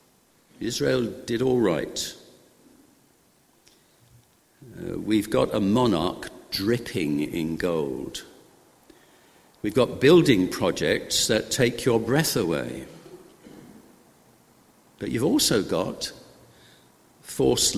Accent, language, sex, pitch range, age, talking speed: British, English, male, 110-140 Hz, 50-69, 90 wpm